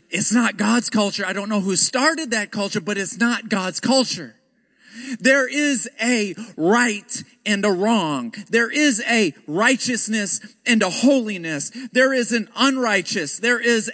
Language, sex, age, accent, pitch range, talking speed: English, male, 40-59, American, 230-295 Hz, 155 wpm